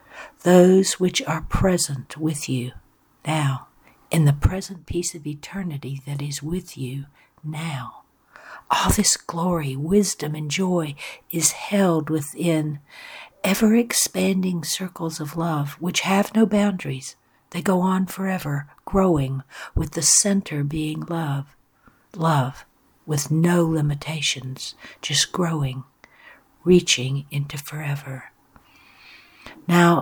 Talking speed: 110 wpm